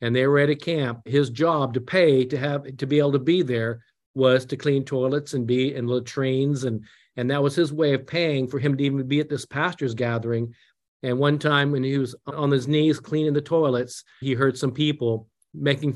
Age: 50-69